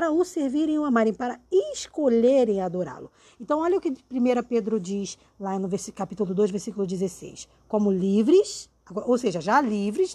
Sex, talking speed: female, 165 wpm